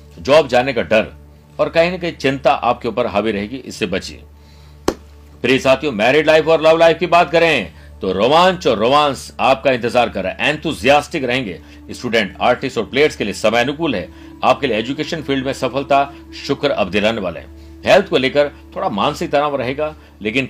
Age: 60-79